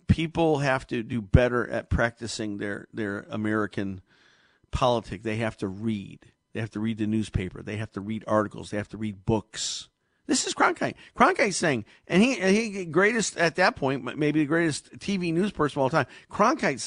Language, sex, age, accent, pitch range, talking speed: English, male, 50-69, American, 110-170 Hz, 190 wpm